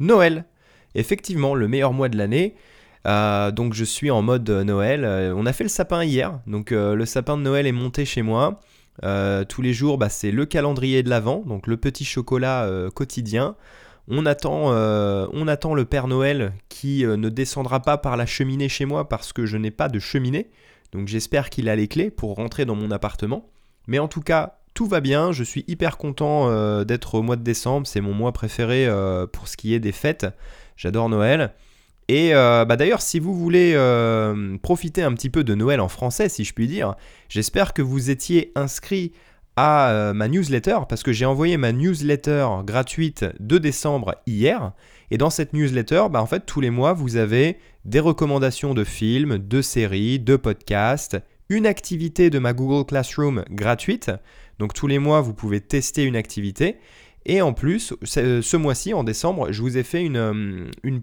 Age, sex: 20-39, male